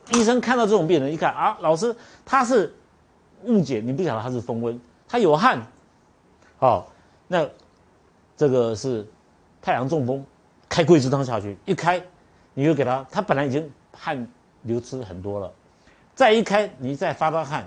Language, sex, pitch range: Chinese, male, 110-175 Hz